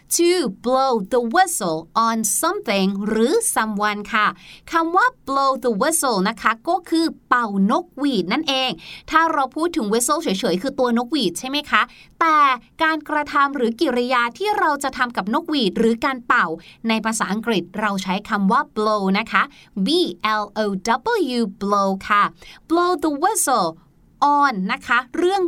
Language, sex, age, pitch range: Thai, female, 30-49, 230-315 Hz